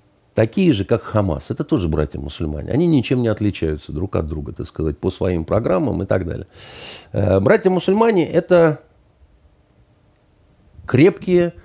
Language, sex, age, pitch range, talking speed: Russian, male, 50-69, 90-145 Hz, 145 wpm